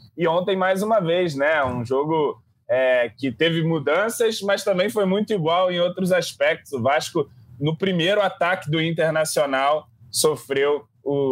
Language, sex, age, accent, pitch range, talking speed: Portuguese, male, 20-39, Brazilian, 130-175 Hz, 155 wpm